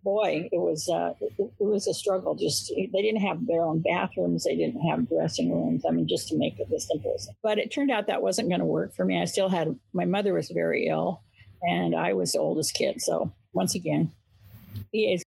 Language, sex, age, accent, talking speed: English, female, 50-69, American, 235 wpm